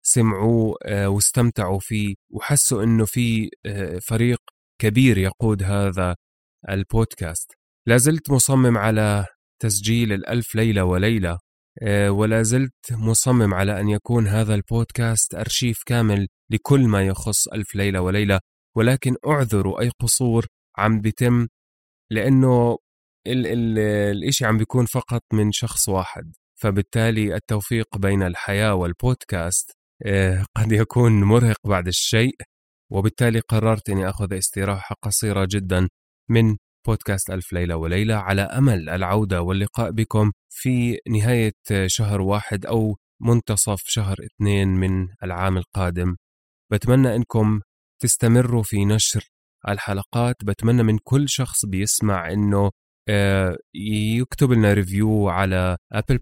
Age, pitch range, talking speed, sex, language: 20-39, 95-115 Hz, 115 wpm, male, Arabic